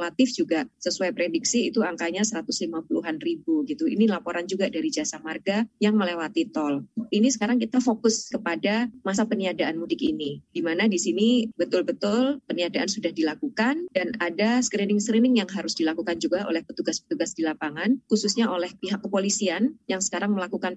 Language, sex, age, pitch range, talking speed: Indonesian, female, 20-39, 175-225 Hz, 155 wpm